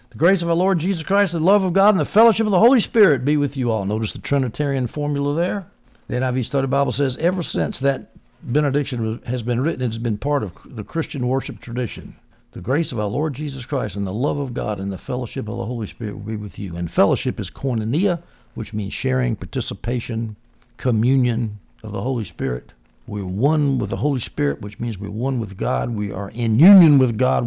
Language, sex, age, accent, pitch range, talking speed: English, male, 60-79, American, 105-140 Hz, 225 wpm